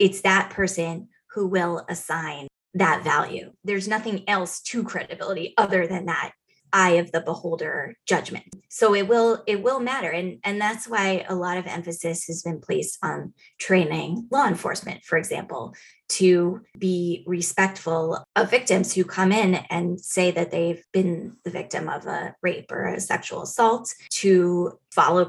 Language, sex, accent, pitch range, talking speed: English, female, American, 170-200 Hz, 160 wpm